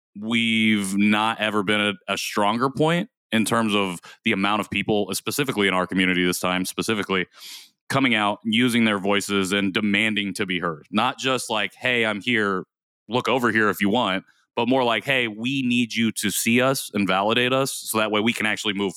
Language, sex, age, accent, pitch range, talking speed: English, male, 30-49, American, 100-120 Hz, 200 wpm